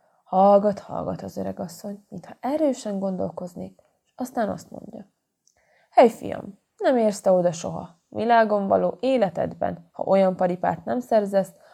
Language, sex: Hungarian, female